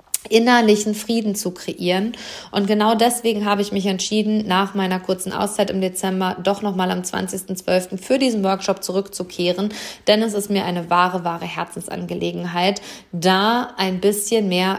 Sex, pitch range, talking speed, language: female, 190-220 Hz, 150 wpm, German